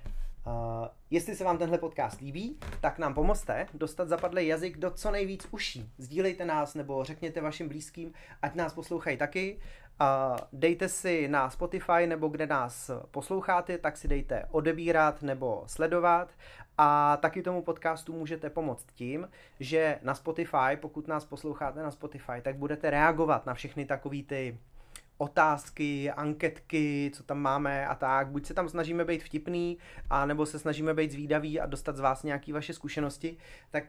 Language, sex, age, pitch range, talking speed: Czech, male, 30-49, 140-170 Hz, 160 wpm